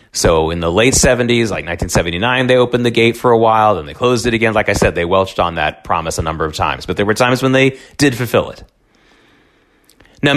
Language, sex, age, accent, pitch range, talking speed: English, male, 30-49, American, 110-155 Hz, 235 wpm